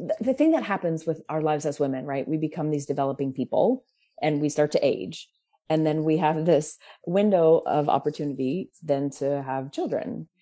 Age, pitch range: 30-49, 140-170 Hz